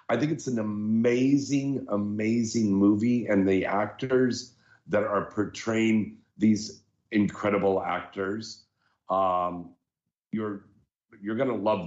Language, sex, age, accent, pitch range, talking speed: English, male, 50-69, American, 95-125 Hz, 105 wpm